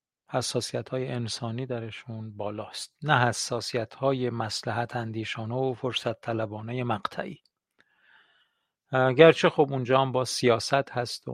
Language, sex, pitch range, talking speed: Persian, male, 115-140 Hz, 115 wpm